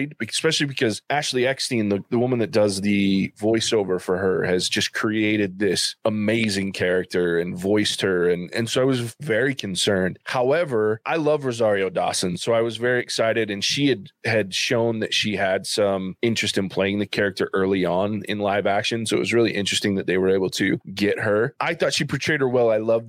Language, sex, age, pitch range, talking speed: English, male, 20-39, 100-120 Hz, 205 wpm